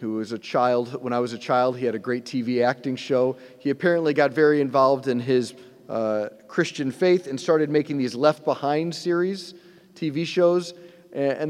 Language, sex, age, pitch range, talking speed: English, male, 40-59, 125-165 Hz, 185 wpm